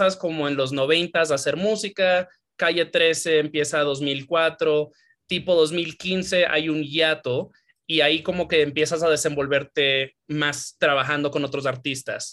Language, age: English, 20-39